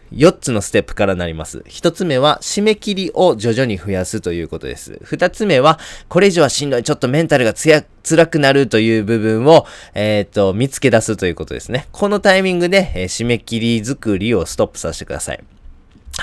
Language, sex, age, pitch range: Japanese, male, 20-39, 100-145 Hz